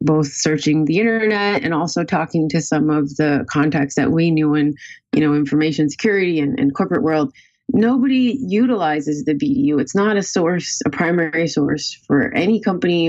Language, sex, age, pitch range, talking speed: English, female, 30-49, 150-195 Hz, 175 wpm